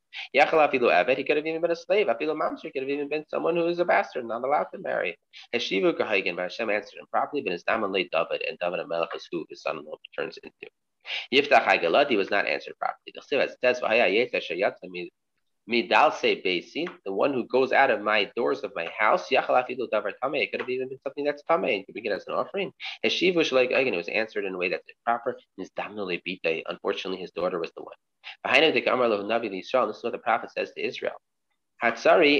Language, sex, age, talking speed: English, male, 30-49, 165 wpm